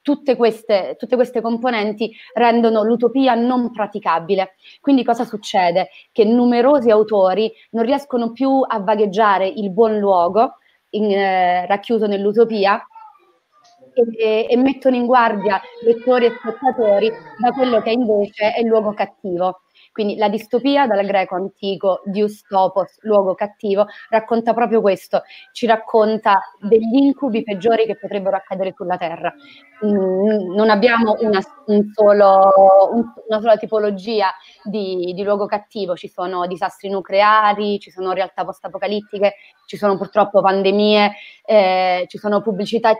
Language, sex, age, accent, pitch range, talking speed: Italian, female, 30-49, native, 195-230 Hz, 130 wpm